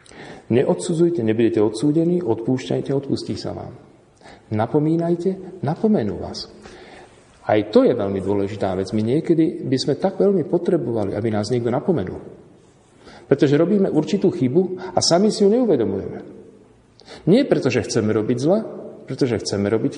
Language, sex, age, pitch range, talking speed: Slovak, male, 50-69, 105-160 Hz, 130 wpm